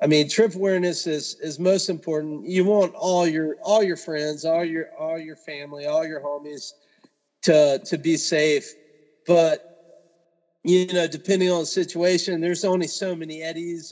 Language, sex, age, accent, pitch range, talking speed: English, male, 40-59, American, 140-175 Hz, 170 wpm